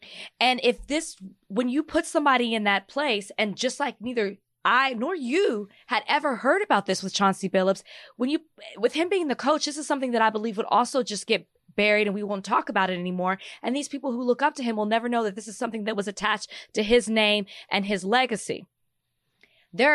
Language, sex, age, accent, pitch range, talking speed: English, female, 20-39, American, 205-260 Hz, 225 wpm